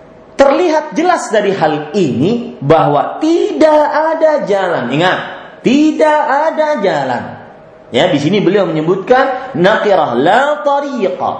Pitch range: 195-295 Hz